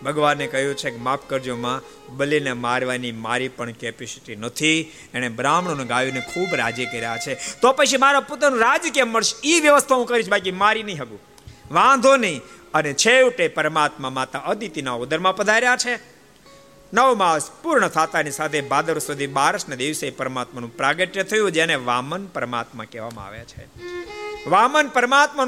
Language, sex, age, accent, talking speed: Gujarati, male, 50-69, native, 55 wpm